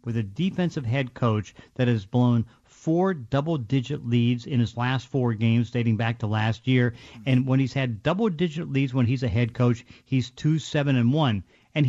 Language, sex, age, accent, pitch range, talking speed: English, male, 50-69, American, 120-150 Hz, 175 wpm